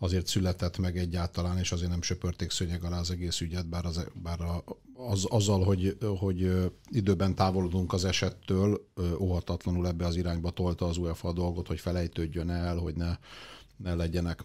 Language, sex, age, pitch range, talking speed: Hungarian, male, 50-69, 85-95 Hz, 165 wpm